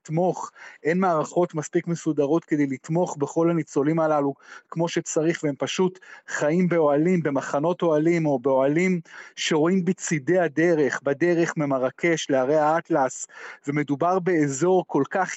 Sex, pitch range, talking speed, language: male, 150-180 Hz, 120 wpm, Hebrew